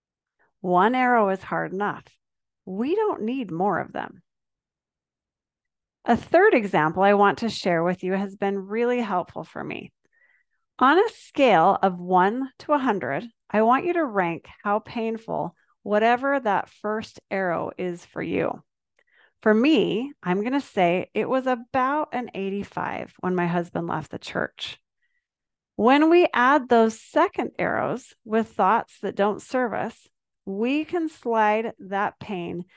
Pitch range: 195-280 Hz